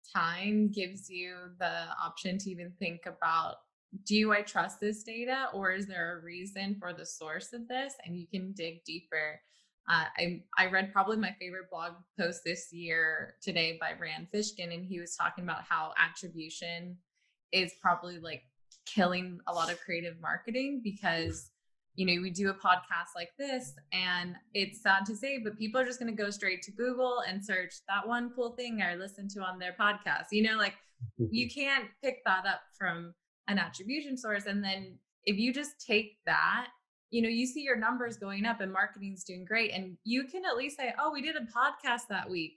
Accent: American